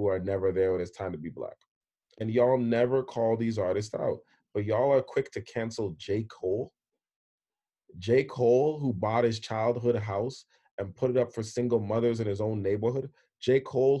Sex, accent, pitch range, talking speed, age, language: male, American, 110-130 Hz, 195 wpm, 30-49, English